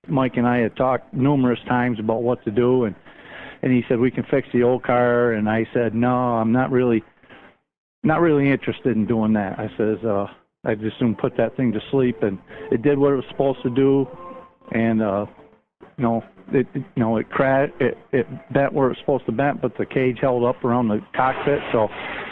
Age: 50-69